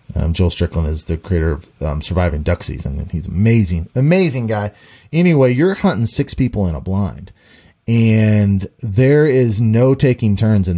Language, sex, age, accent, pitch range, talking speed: English, male, 30-49, American, 100-130 Hz, 175 wpm